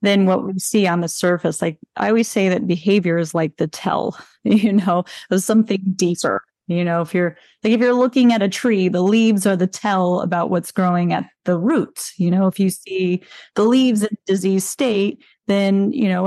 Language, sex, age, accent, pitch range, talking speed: English, female, 30-49, American, 180-235 Hz, 210 wpm